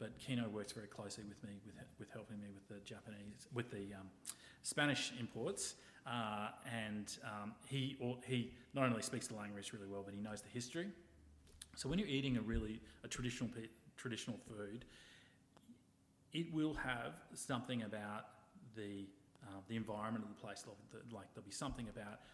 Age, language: 30-49, English